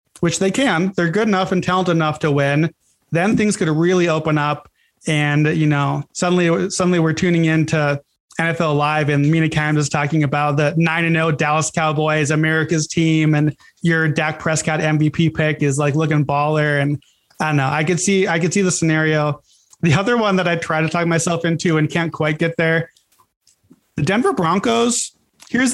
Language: English